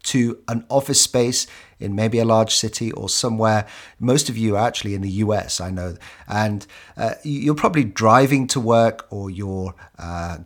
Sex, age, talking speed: male, 40-59, 180 wpm